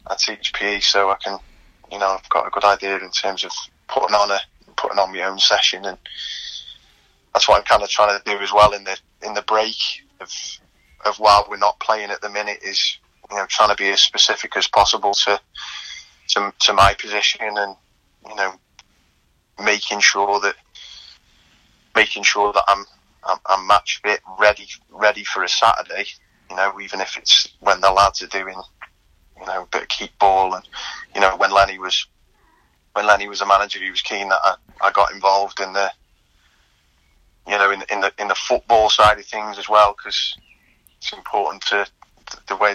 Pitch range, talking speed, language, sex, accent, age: 100-105 Hz, 195 wpm, English, male, British, 20-39